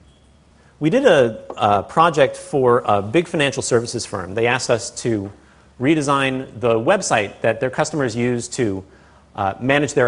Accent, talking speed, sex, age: American, 155 wpm, male, 40-59